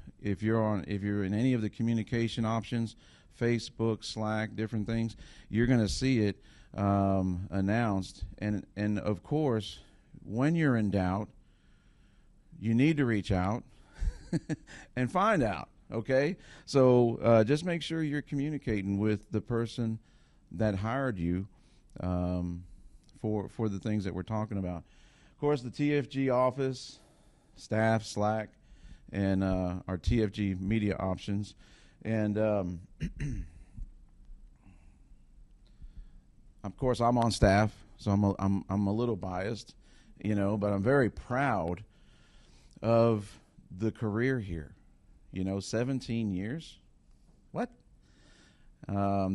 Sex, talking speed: male, 125 wpm